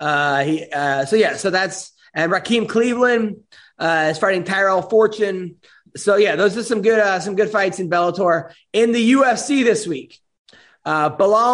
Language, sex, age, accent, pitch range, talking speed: English, male, 30-49, American, 170-215 Hz, 175 wpm